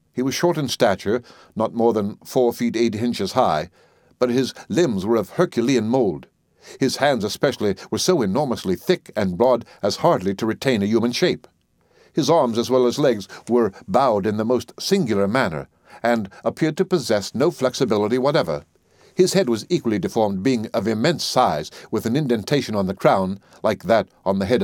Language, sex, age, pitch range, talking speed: English, male, 60-79, 110-135 Hz, 185 wpm